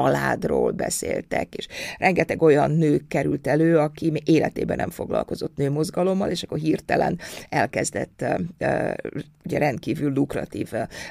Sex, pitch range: female, 155-195 Hz